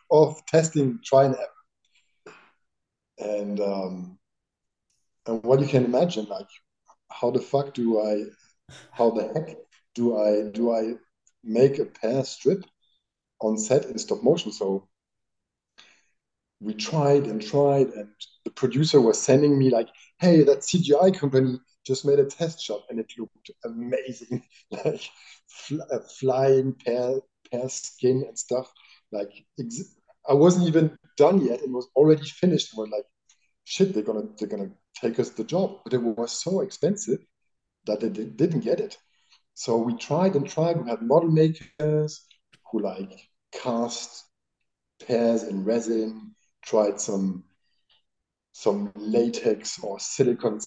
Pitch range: 110-145 Hz